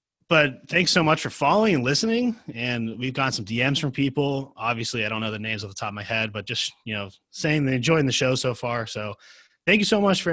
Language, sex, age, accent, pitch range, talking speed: English, male, 20-39, American, 110-150 Hz, 255 wpm